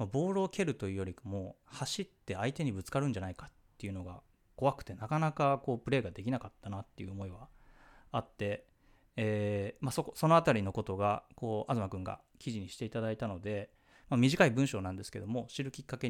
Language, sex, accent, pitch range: Japanese, male, native, 100-135 Hz